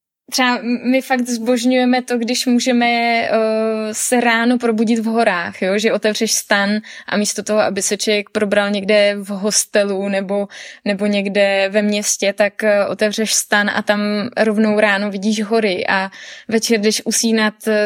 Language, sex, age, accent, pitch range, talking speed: Czech, female, 20-39, native, 210-245 Hz, 145 wpm